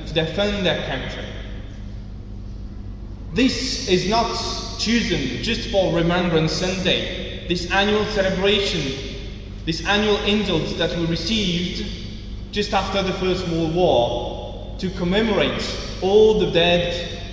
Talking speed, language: 105 wpm, English